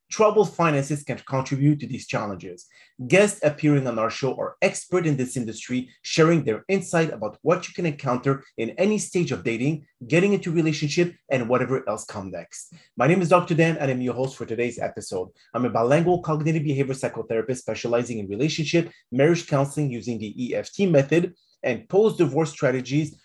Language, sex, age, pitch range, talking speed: English, male, 30-49, 120-160 Hz, 175 wpm